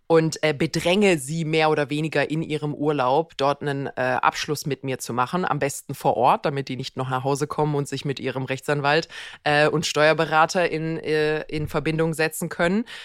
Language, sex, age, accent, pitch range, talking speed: German, female, 20-39, German, 150-185 Hz, 200 wpm